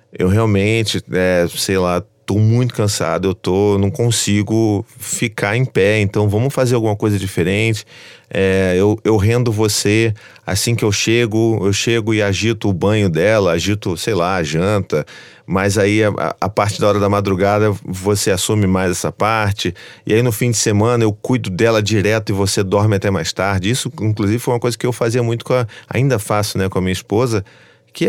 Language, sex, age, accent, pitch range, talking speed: Portuguese, male, 30-49, Brazilian, 100-120 Hz, 195 wpm